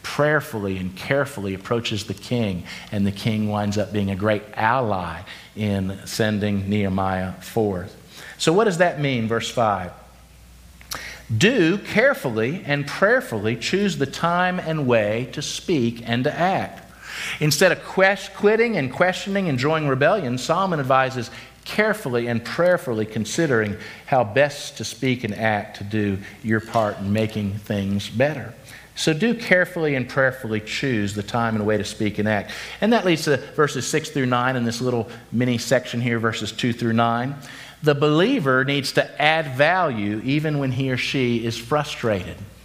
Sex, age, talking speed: male, 50-69, 160 wpm